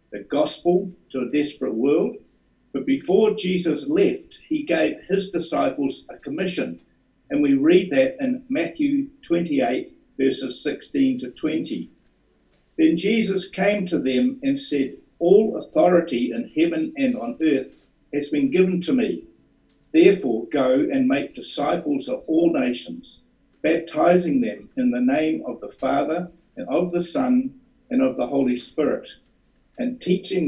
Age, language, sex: 60-79, English, male